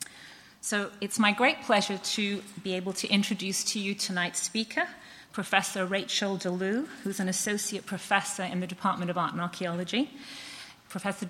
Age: 30-49